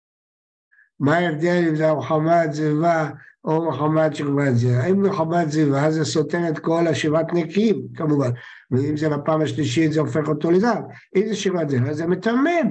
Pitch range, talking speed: 150-200 Hz, 155 wpm